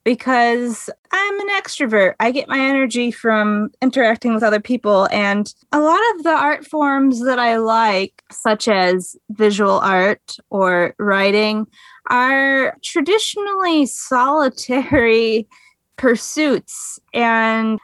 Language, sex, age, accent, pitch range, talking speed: English, female, 20-39, American, 205-270 Hz, 115 wpm